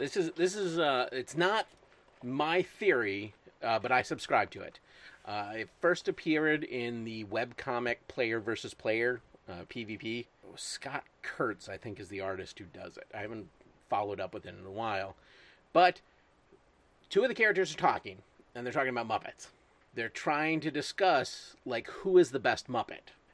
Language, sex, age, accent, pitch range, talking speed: English, male, 30-49, American, 120-185 Hz, 175 wpm